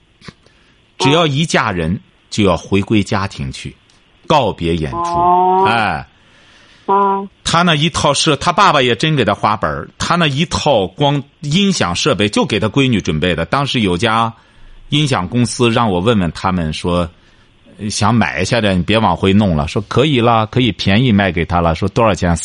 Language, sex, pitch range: Chinese, male, 90-145 Hz